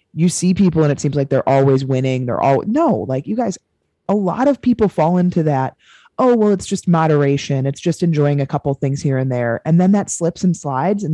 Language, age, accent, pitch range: English, 20-39, American, 135-180 Hz